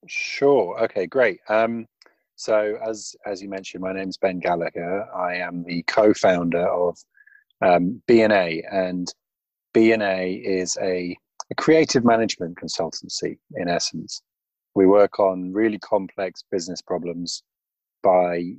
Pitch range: 90-110 Hz